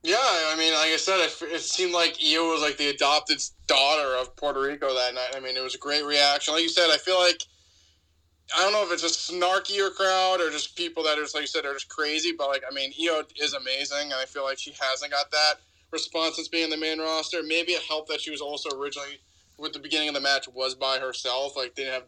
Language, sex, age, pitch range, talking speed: English, male, 20-39, 130-155 Hz, 260 wpm